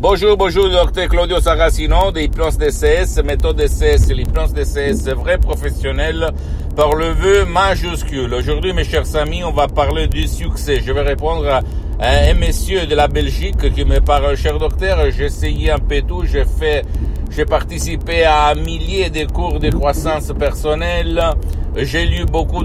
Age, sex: 60-79, male